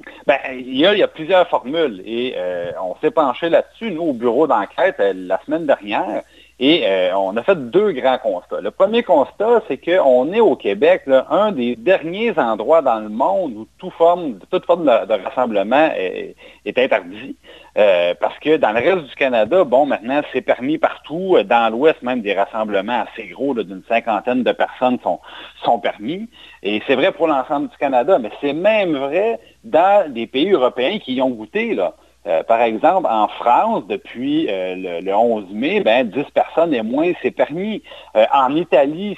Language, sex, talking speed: French, male, 185 wpm